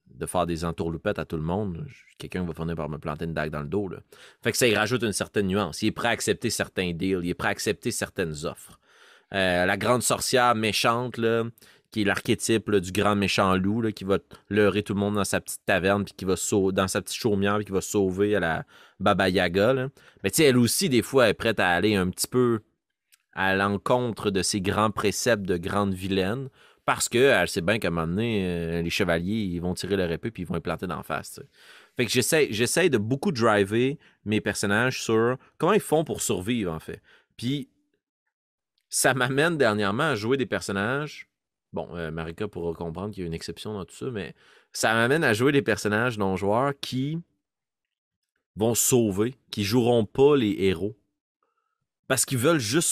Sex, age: male, 30-49